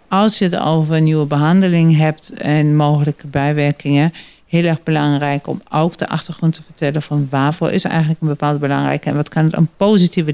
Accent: Dutch